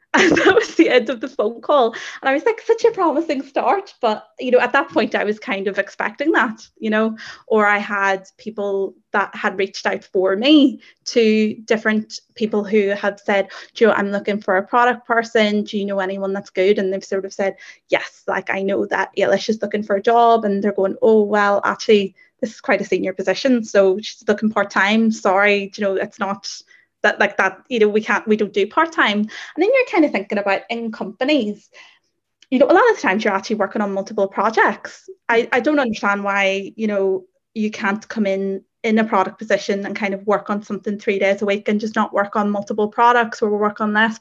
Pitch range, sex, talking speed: 200-235 Hz, female, 225 wpm